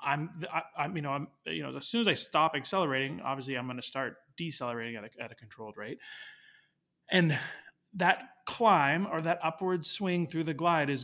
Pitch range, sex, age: 130-165 Hz, male, 30-49